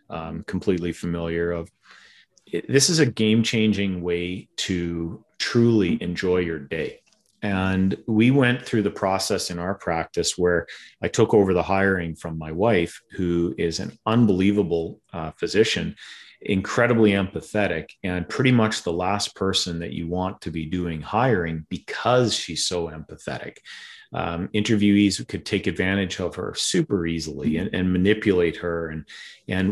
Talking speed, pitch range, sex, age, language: 145 wpm, 85-105 Hz, male, 40-59, English